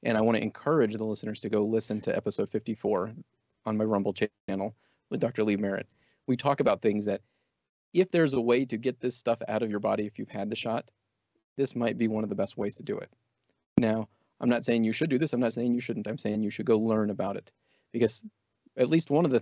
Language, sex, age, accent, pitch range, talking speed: English, male, 30-49, American, 105-120 Hz, 245 wpm